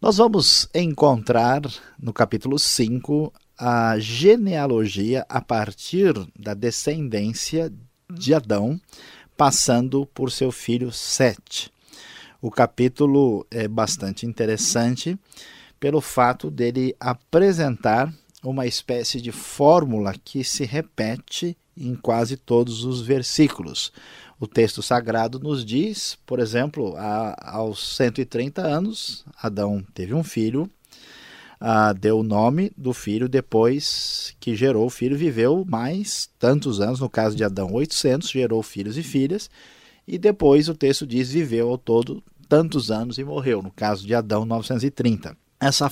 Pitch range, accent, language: 115-145 Hz, Brazilian, Portuguese